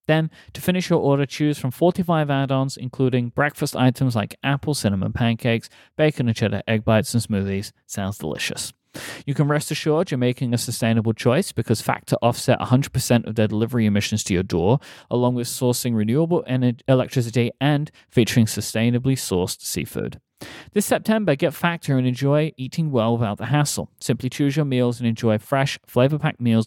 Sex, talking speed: male, 170 wpm